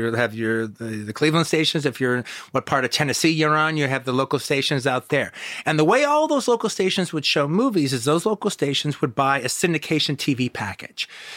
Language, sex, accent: English, male, American